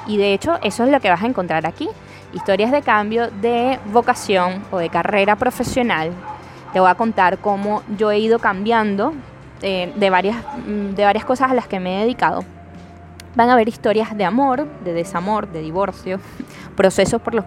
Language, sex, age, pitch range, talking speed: Spanish, female, 10-29, 190-245 Hz, 185 wpm